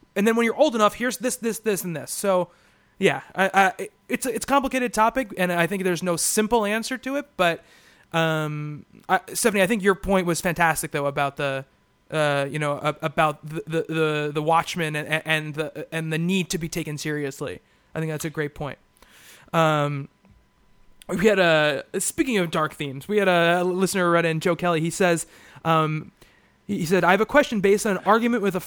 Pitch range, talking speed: 160-205 Hz, 190 wpm